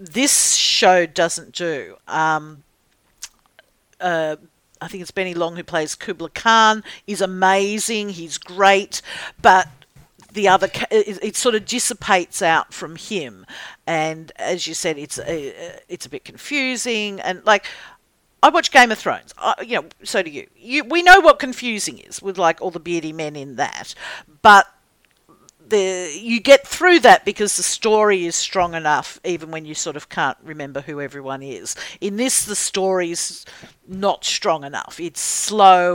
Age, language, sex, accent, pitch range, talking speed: 50-69, English, female, Australian, 165-215 Hz, 160 wpm